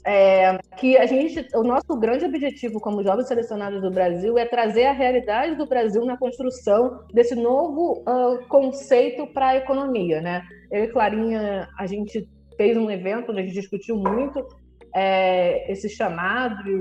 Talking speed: 140 wpm